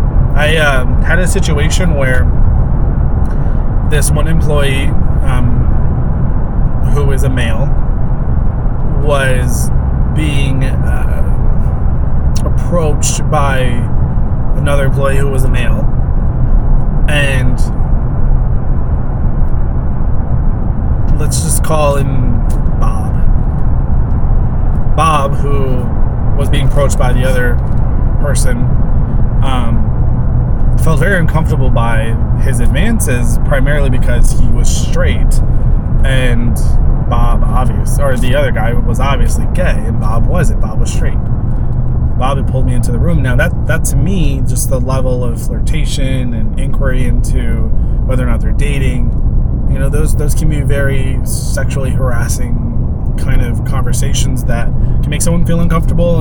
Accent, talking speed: American, 120 wpm